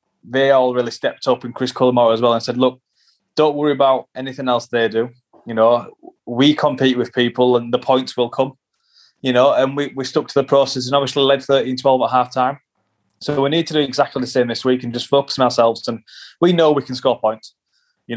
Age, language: 20-39, English